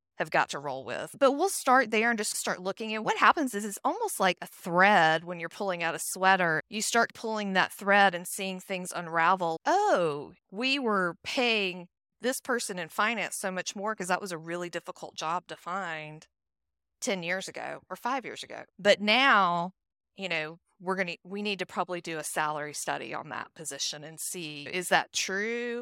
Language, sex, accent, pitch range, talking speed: English, female, American, 170-230 Hz, 200 wpm